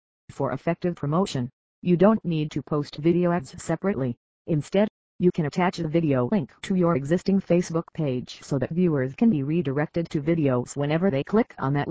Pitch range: 140-180 Hz